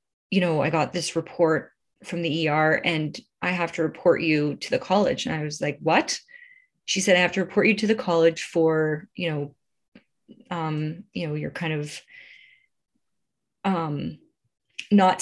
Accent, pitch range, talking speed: American, 165-210 Hz, 175 wpm